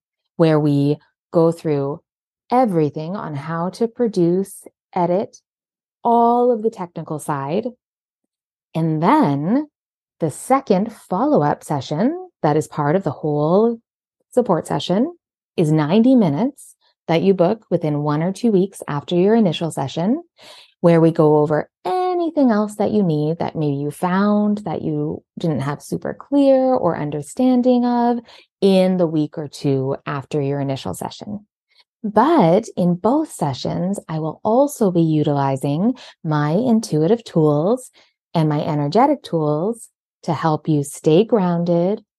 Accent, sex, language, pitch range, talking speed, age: American, female, English, 150-225 Hz, 135 wpm, 20-39